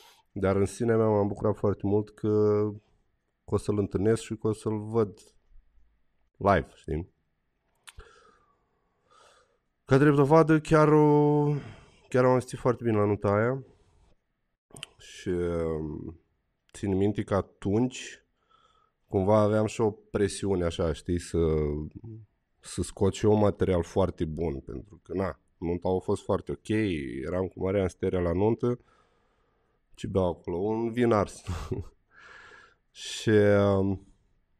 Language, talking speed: Romanian, 125 wpm